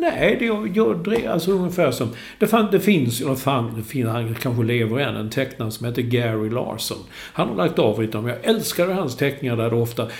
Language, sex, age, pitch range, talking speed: English, male, 50-69, 115-150 Hz, 200 wpm